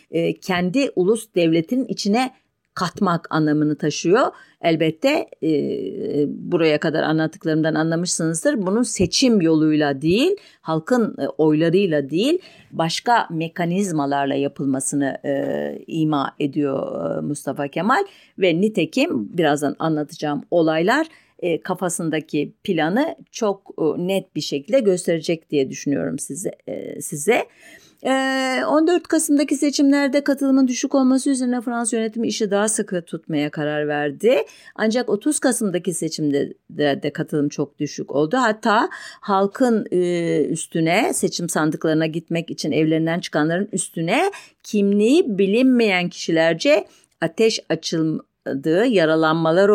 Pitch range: 155-225 Hz